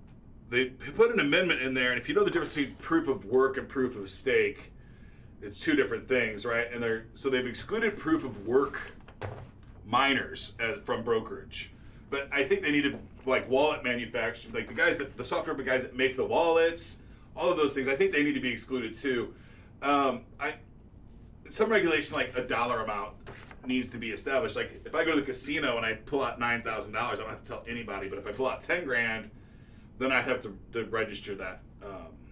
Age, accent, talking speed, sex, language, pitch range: 30-49, American, 215 wpm, male, English, 115-145 Hz